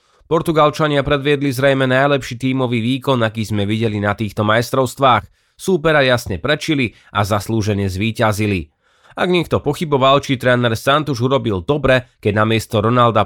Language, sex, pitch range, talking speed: Slovak, male, 110-135 Hz, 130 wpm